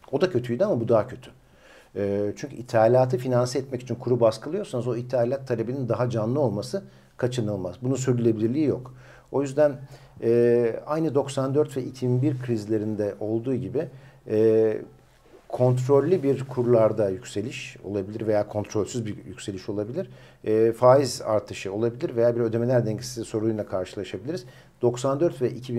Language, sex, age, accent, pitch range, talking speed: Turkish, male, 50-69, native, 110-130 Hz, 135 wpm